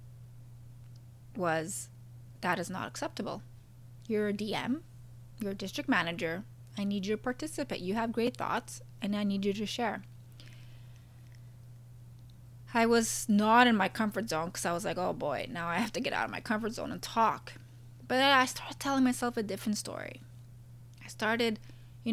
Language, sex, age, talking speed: English, female, 20-39, 175 wpm